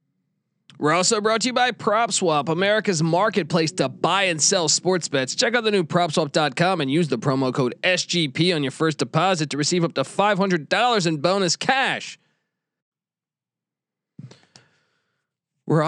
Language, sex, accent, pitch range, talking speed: English, male, American, 160-200 Hz, 145 wpm